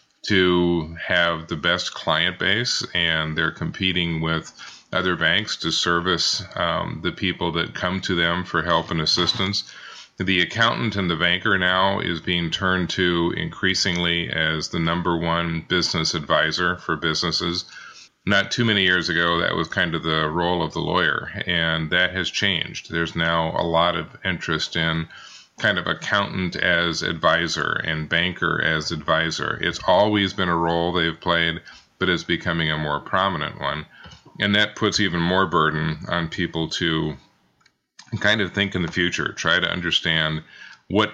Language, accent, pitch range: English, American, 80-90 Hz